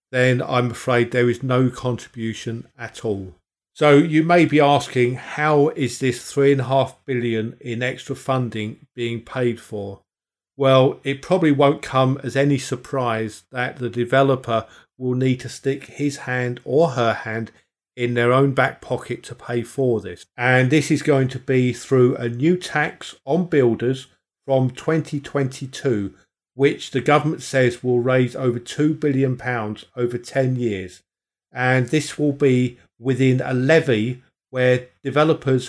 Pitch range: 120-140 Hz